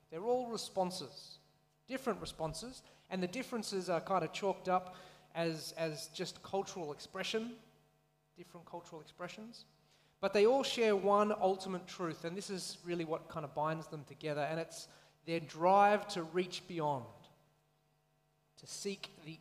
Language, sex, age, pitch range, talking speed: English, male, 30-49, 150-185 Hz, 150 wpm